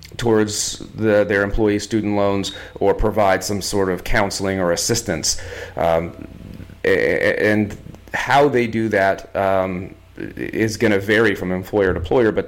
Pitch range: 95-110 Hz